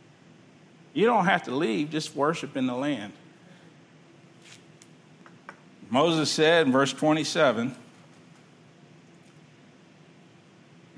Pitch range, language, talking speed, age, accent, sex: 130-160 Hz, English, 80 wpm, 50-69, American, male